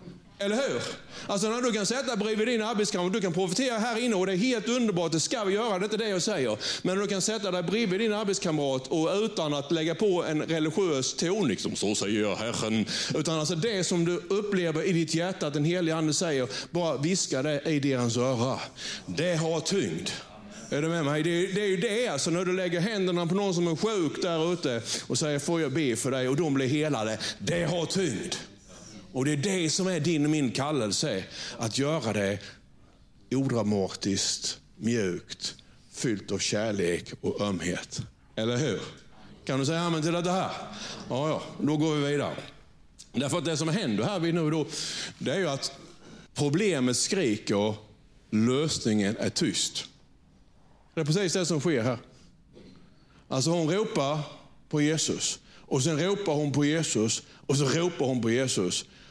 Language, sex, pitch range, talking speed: Swedish, male, 130-185 Hz, 190 wpm